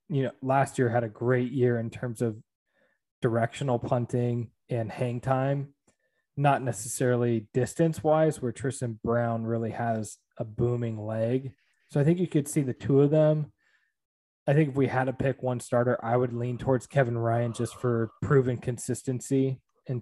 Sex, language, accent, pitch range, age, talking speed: male, English, American, 115-130 Hz, 20-39, 175 wpm